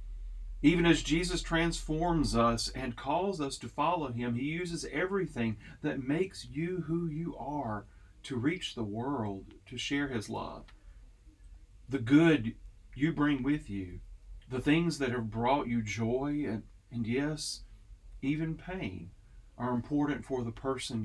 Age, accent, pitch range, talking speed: 40-59, American, 110-150 Hz, 145 wpm